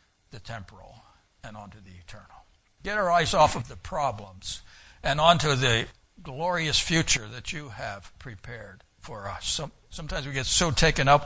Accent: American